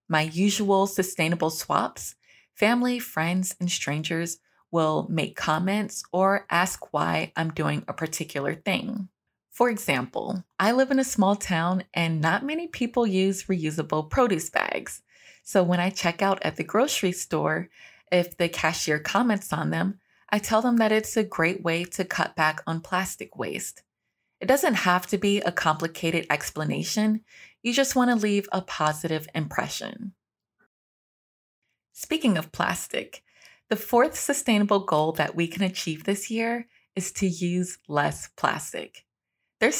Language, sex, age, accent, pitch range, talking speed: English, female, 20-39, American, 165-210 Hz, 150 wpm